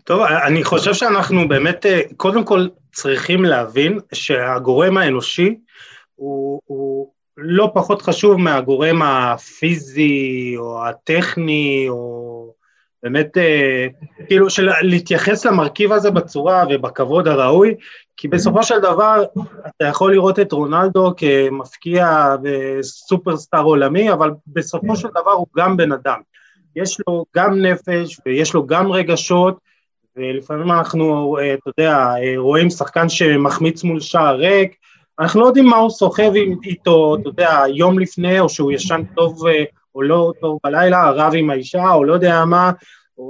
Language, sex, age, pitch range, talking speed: Hebrew, male, 30-49, 145-185 Hz, 135 wpm